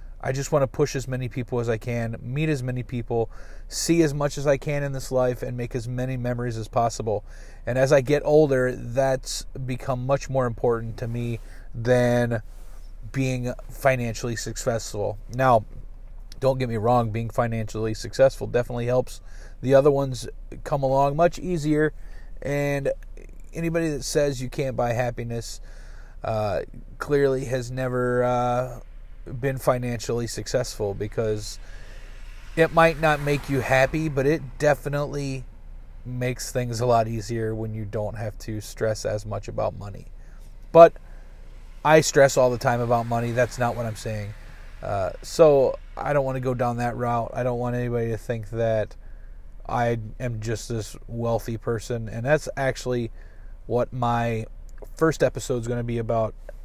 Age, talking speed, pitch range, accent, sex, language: 30-49, 160 wpm, 115-135 Hz, American, male, English